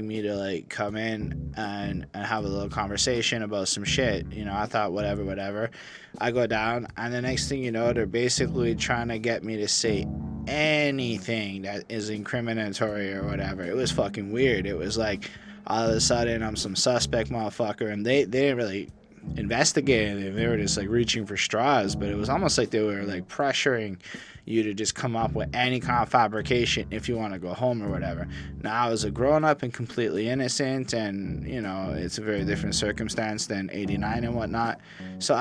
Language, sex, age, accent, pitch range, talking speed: English, male, 20-39, American, 105-130 Hz, 200 wpm